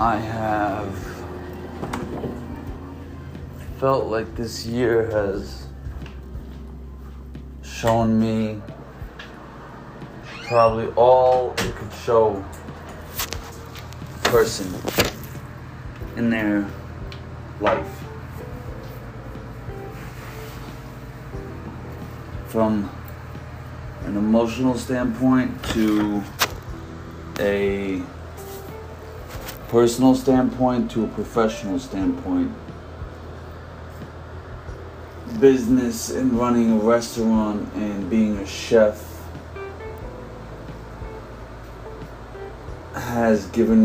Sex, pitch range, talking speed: male, 85-115 Hz, 55 wpm